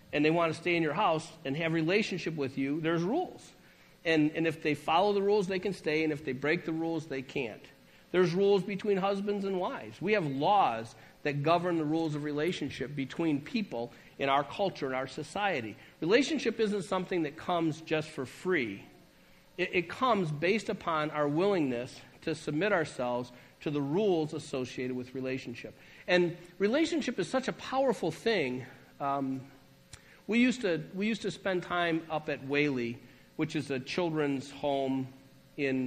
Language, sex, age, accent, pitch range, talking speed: English, male, 50-69, American, 135-180 Hz, 175 wpm